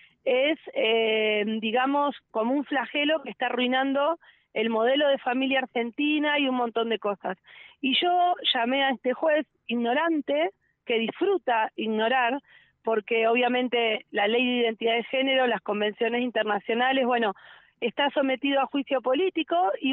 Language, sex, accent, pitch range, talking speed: Spanish, female, Argentinian, 235-285 Hz, 140 wpm